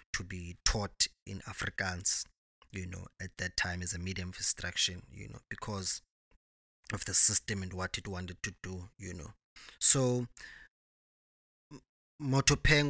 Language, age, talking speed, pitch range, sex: English, 20-39, 145 wpm, 90-115 Hz, male